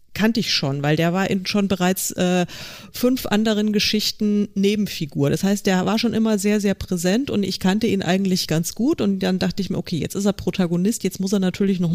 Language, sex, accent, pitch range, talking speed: German, female, German, 175-225 Hz, 225 wpm